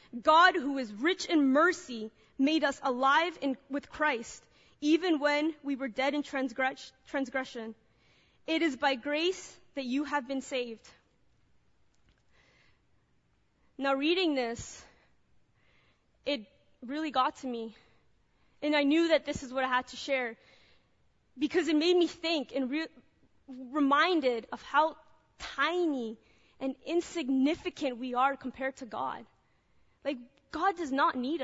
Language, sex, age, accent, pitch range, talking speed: English, female, 20-39, American, 270-320 Hz, 130 wpm